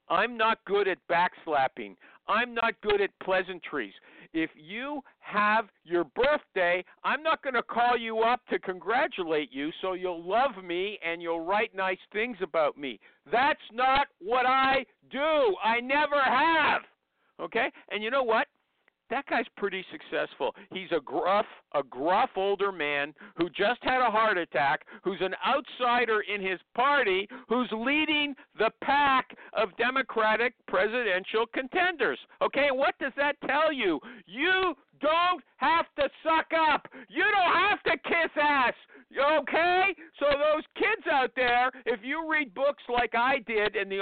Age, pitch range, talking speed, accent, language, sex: 50-69, 205-310 Hz, 155 wpm, American, English, male